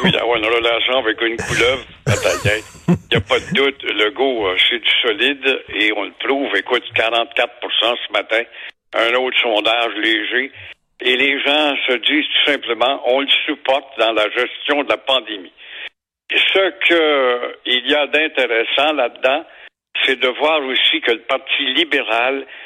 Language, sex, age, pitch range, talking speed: French, male, 60-79, 130-170 Hz, 155 wpm